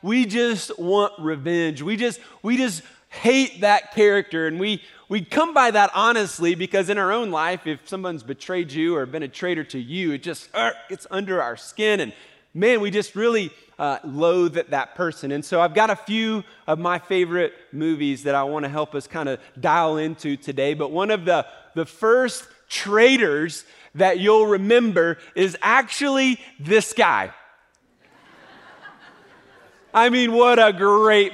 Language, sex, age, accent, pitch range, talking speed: English, male, 30-49, American, 175-225 Hz, 170 wpm